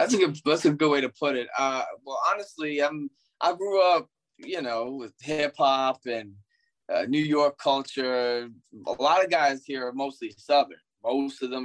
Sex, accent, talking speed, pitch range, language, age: male, American, 175 wpm, 115-150 Hz, English, 20-39